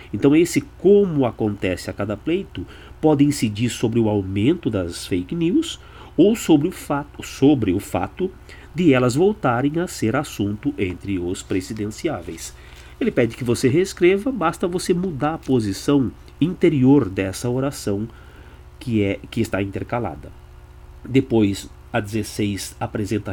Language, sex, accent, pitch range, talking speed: Portuguese, male, Brazilian, 100-145 Hz, 130 wpm